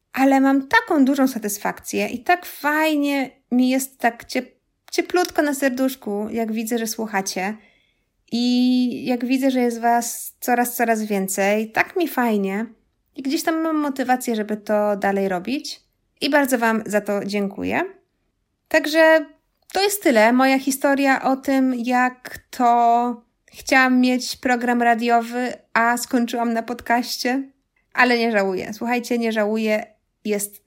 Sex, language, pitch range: female, Polish, 210-265 Hz